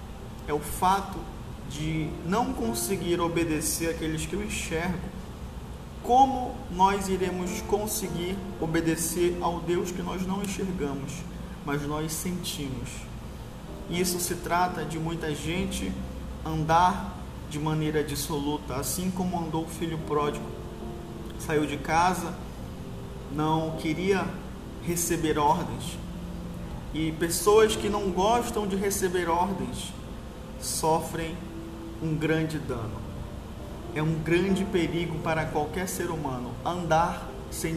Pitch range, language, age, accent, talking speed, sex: 145-185 Hz, Portuguese, 20-39, Brazilian, 110 wpm, male